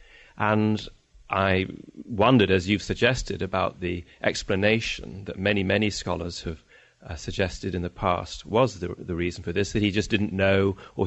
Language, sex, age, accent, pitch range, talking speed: English, male, 30-49, British, 95-125 Hz, 165 wpm